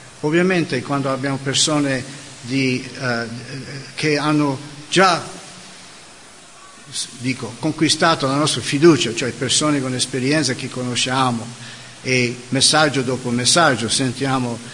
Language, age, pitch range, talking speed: Italian, 50-69, 130-155 Hz, 100 wpm